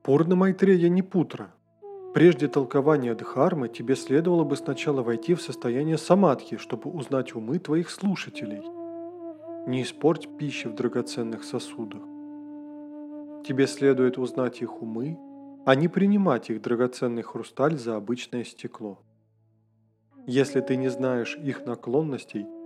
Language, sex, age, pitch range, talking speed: Russian, male, 20-39, 125-185 Hz, 125 wpm